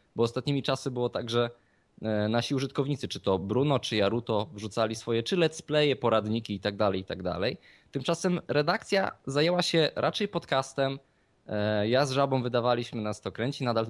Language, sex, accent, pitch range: Polish, male, native, 110-140 Hz